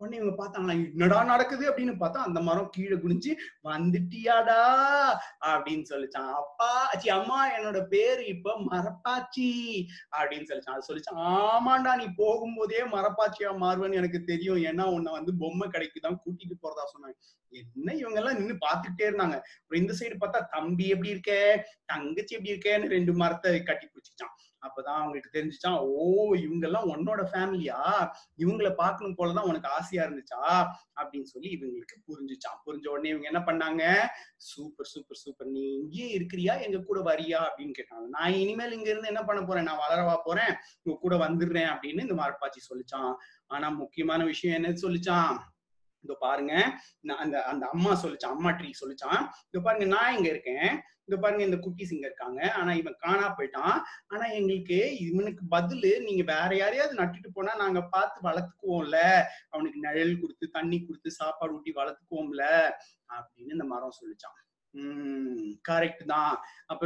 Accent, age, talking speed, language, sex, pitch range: native, 30-49, 125 wpm, Tamil, male, 165-215 Hz